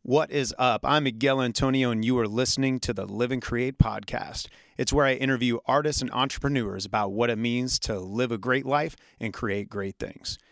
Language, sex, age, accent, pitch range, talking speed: English, male, 30-49, American, 110-130 Hz, 205 wpm